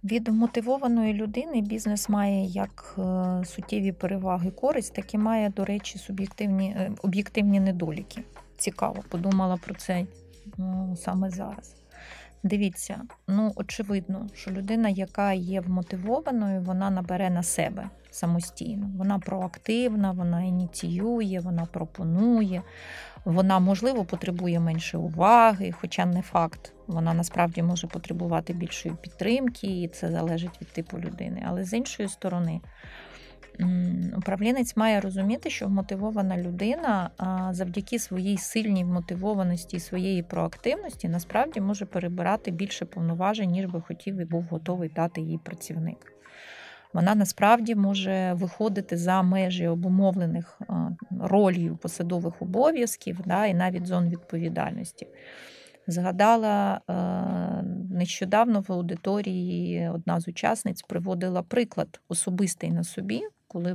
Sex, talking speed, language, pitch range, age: female, 115 wpm, Ukrainian, 175-205 Hz, 30-49